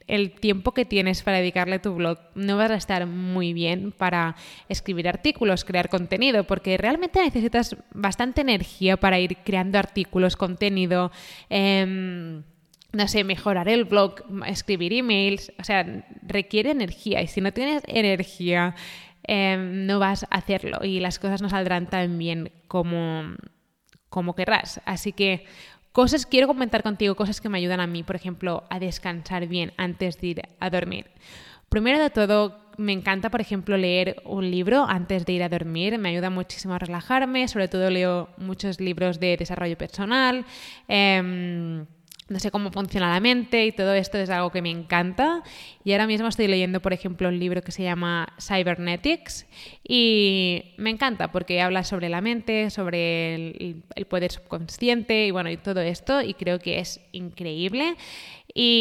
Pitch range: 180-210 Hz